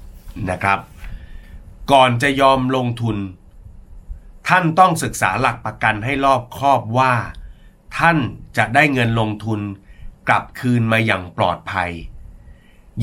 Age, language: 30-49, Thai